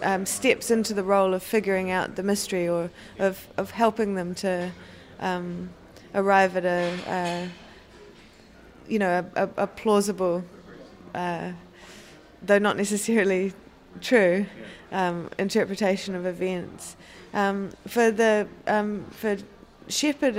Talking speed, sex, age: 125 wpm, female, 20-39